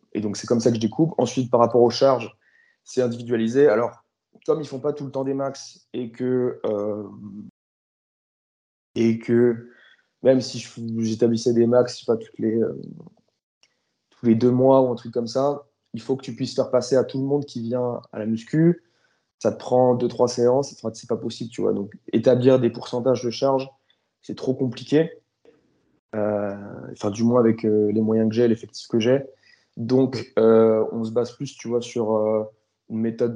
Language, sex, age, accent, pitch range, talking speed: French, male, 20-39, French, 110-125 Hz, 200 wpm